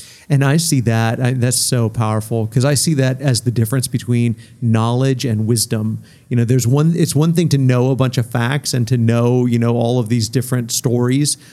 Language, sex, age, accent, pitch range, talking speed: English, male, 50-69, American, 120-145 Hz, 215 wpm